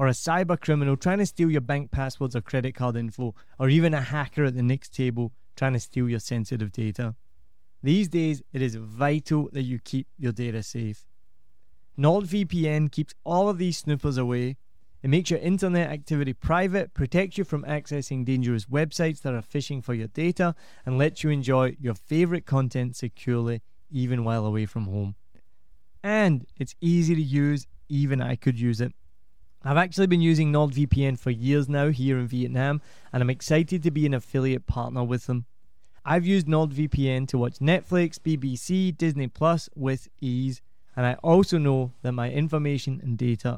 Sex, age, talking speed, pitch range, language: male, 20-39, 175 wpm, 120-155 Hz, English